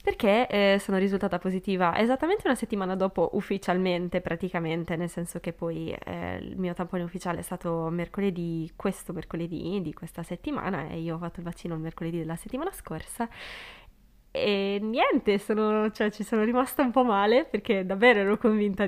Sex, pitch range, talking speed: female, 170-210 Hz, 170 wpm